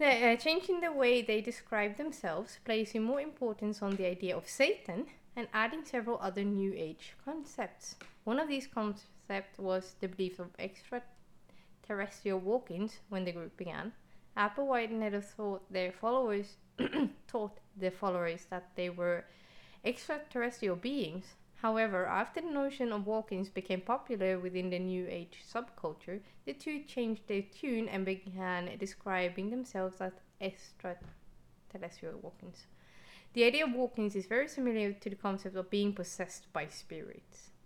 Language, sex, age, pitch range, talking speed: English, female, 20-39, 185-240 Hz, 140 wpm